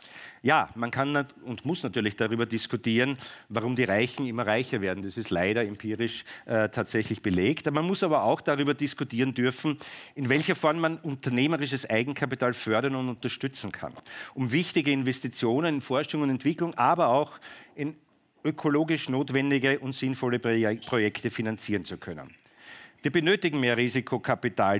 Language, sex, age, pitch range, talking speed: German, male, 50-69, 115-145 Hz, 150 wpm